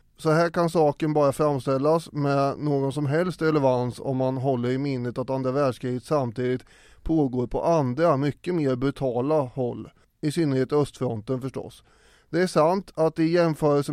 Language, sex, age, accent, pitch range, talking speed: English, male, 30-49, Swedish, 130-155 Hz, 160 wpm